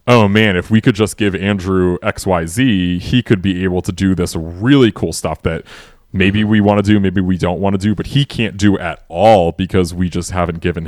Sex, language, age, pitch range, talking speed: male, English, 30-49, 90-110 Hz, 245 wpm